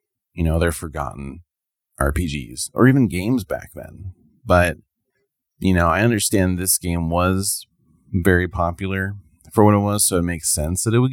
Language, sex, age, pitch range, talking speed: English, male, 30-49, 80-105 Hz, 165 wpm